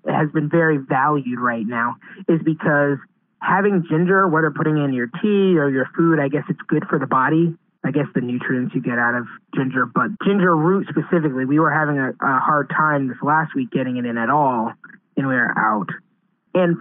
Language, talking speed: English, 205 wpm